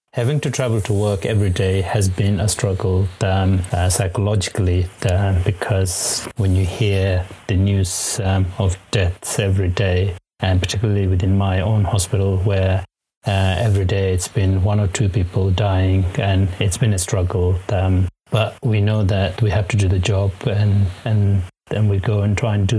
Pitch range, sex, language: 95-110 Hz, male, English